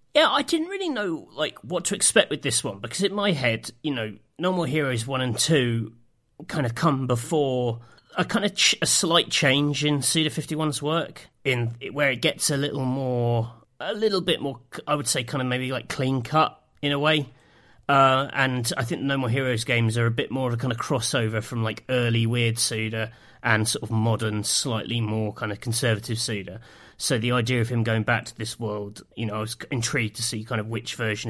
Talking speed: 225 wpm